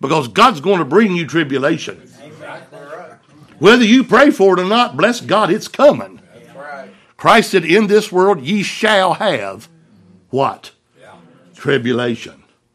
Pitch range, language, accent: 130-205 Hz, English, American